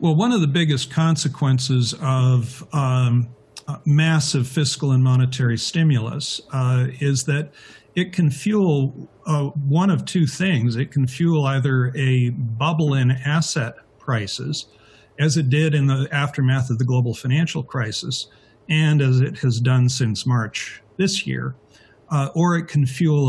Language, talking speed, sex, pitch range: English, 150 wpm, male, 125-145 Hz